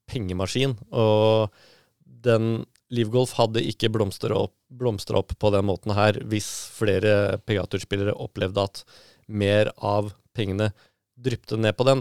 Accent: Swedish